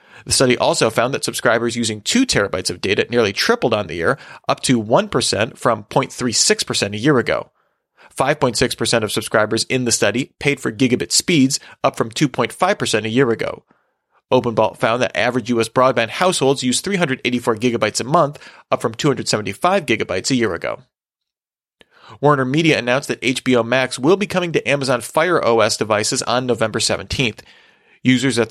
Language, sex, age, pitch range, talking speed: English, male, 30-49, 115-145 Hz, 165 wpm